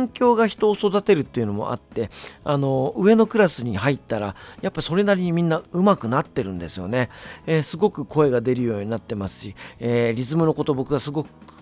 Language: Japanese